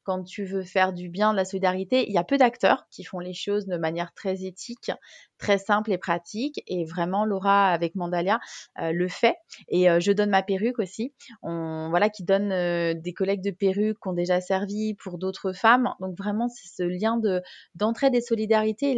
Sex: female